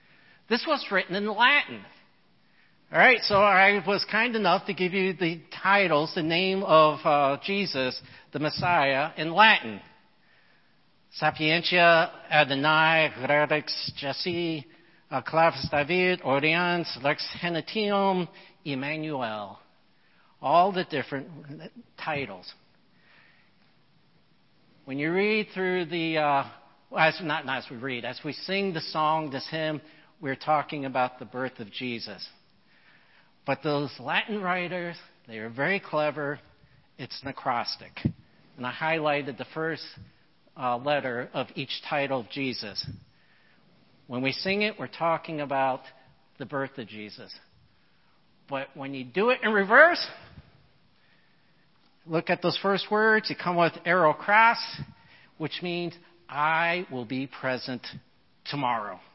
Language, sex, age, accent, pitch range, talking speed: English, male, 60-79, American, 135-180 Hz, 125 wpm